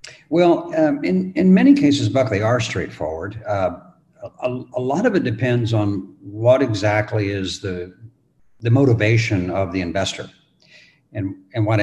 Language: English